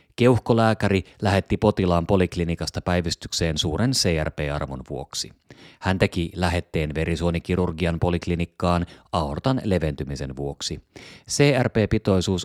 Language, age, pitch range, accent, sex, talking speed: Finnish, 30-49, 80-110 Hz, native, male, 80 wpm